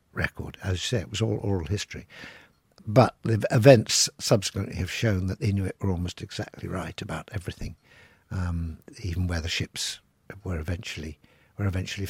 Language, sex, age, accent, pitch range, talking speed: English, male, 60-79, British, 95-120 Hz, 165 wpm